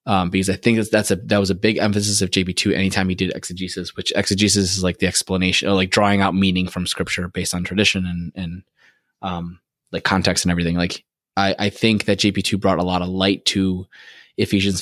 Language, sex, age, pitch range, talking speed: English, male, 20-39, 90-100 Hz, 225 wpm